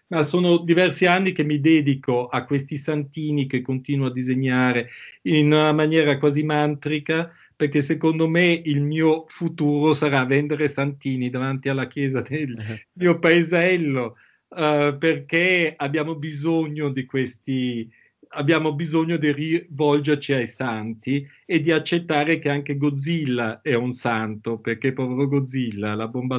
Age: 50-69